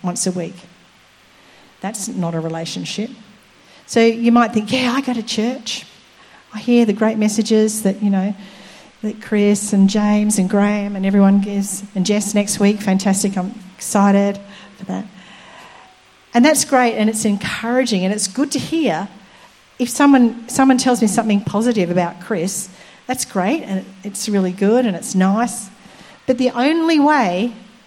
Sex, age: female, 40-59